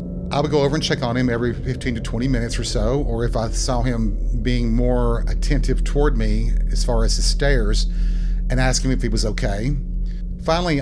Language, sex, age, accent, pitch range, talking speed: English, male, 40-59, American, 105-130 Hz, 210 wpm